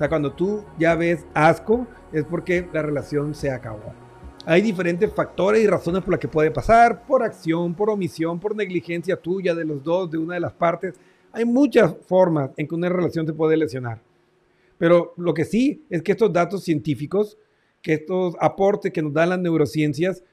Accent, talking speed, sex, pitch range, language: Mexican, 185 wpm, male, 155-195 Hz, Spanish